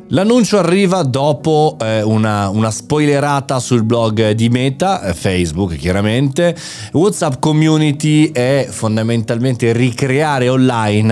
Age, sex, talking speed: 30-49, male, 110 wpm